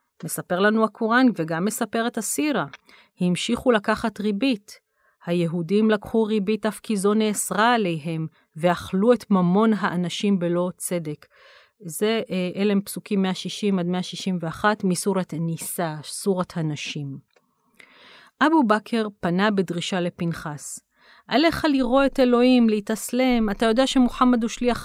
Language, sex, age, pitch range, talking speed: Hebrew, female, 40-59, 180-235 Hz, 120 wpm